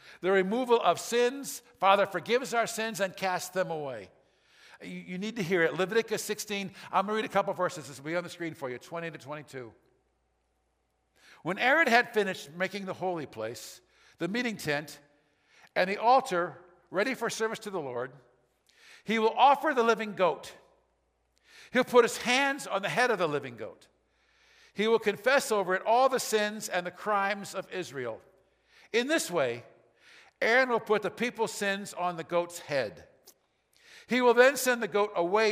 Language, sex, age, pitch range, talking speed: English, male, 50-69, 170-235 Hz, 180 wpm